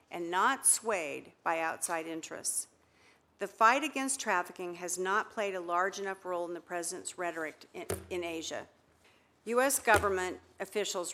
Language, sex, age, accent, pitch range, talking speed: English, female, 50-69, American, 165-205 Hz, 145 wpm